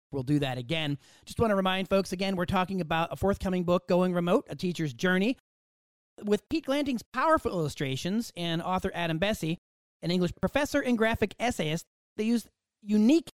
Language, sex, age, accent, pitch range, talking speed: English, male, 40-59, American, 155-205 Hz, 175 wpm